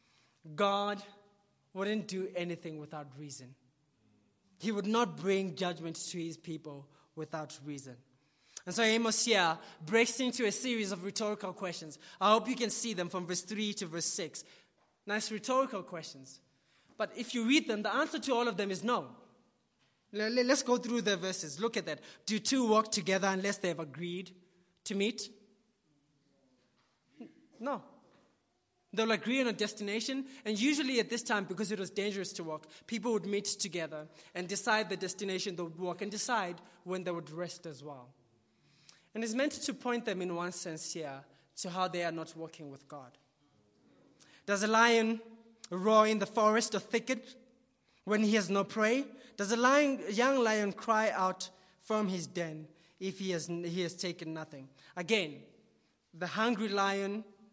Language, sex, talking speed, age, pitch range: English, male, 170 wpm, 20-39, 165-220 Hz